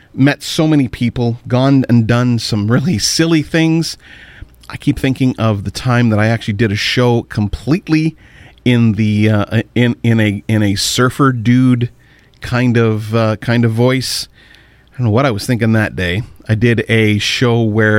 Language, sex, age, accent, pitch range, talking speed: English, male, 40-59, American, 110-130 Hz, 180 wpm